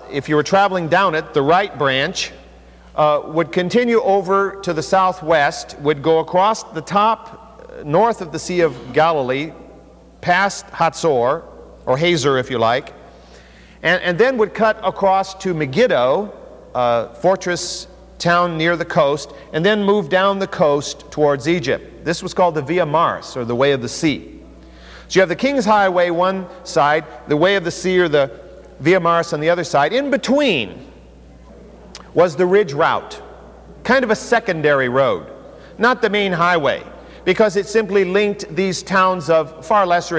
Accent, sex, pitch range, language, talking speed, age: American, male, 140-190 Hz, English, 170 wpm, 50-69